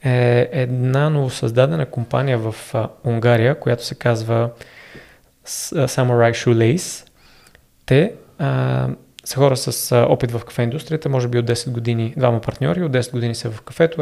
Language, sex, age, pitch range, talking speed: Bulgarian, male, 20-39, 120-140 Hz, 145 wpm